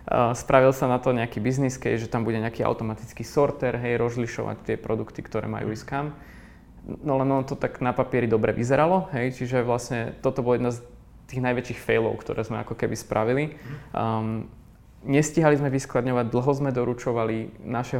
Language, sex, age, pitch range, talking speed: Slovak, male, 20-39, 115-130 Hz, 175 wpm